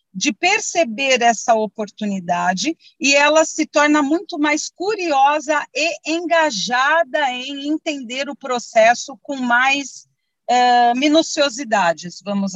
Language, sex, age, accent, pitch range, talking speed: Portuguese, female, 40-59, Brazilian, 230-300 Hz, 100 wpm